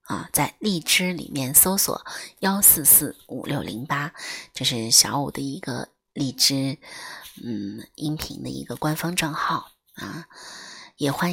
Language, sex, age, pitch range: Chinese, female, 30-49, 135-170 Hz